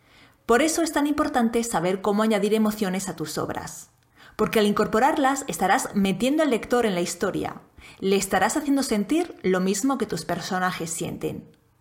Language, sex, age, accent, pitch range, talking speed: Spanish, female, 30-49, Spanish, 185-250 Hz, 165 wpm